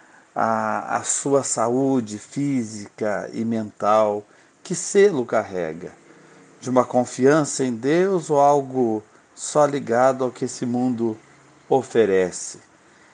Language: Portuguese